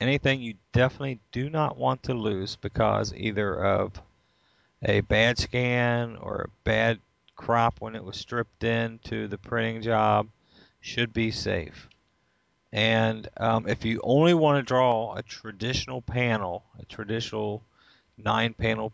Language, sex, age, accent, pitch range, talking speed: English, male, 40-59, American, 105-120 Hz, 135 wpm